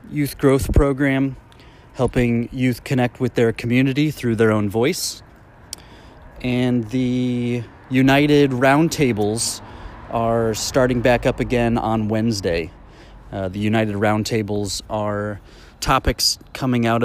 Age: 30-49